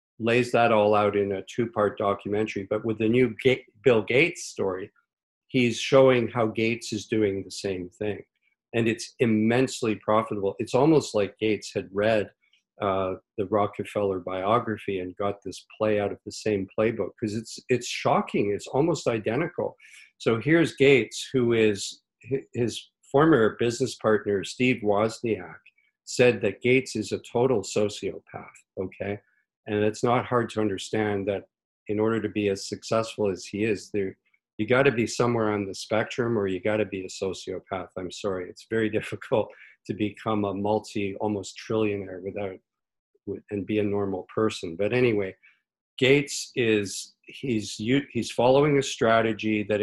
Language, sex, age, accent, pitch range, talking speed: English, male, 50-69, American, 100-115 Hz, 160 wpm